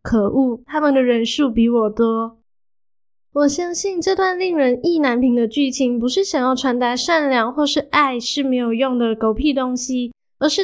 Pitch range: 240-300 Hz